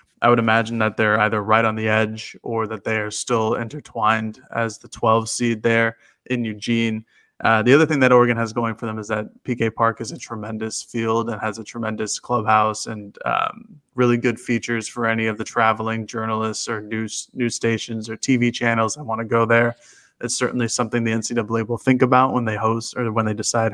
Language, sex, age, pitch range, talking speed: English, male, 20-39, 110-125 Hz, 210 wpm